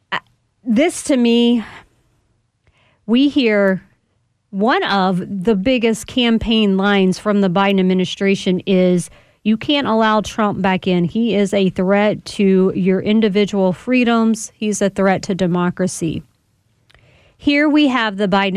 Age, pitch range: 40-59, 195-245 Hz